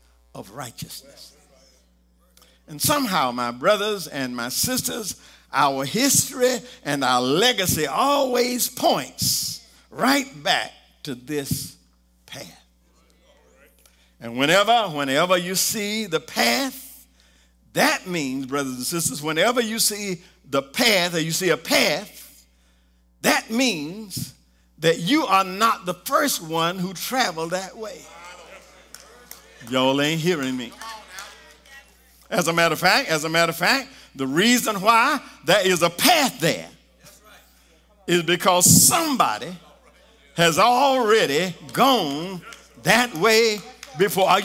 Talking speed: 120 wpm